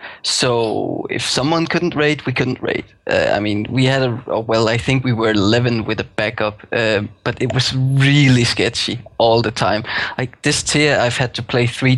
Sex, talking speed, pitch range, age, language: male, 200 wpm, 115-130 Hz, 20-39, English